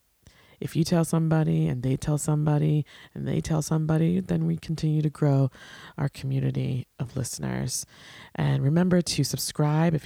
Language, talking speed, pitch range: English, 155 wpm, 135-175 Hz